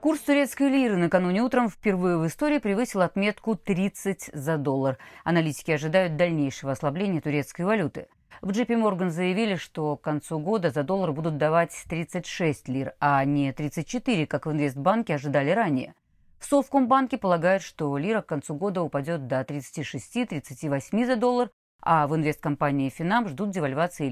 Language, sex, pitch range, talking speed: Russian, female, 150-205 Hz, 150 wpm